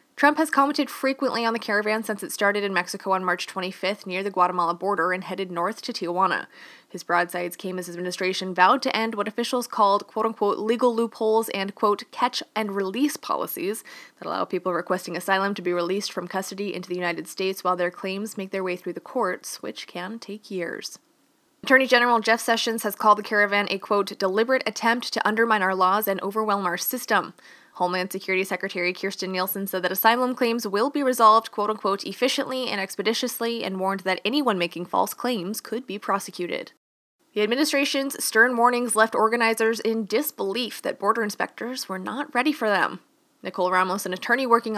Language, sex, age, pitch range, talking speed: English, female, 20-39, 185-230 Hz, 185 wpm